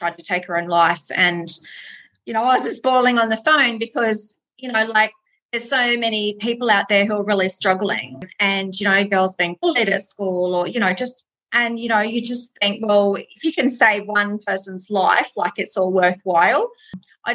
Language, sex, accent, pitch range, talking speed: English, female, Australian, 185-220 Hz, 210 wpm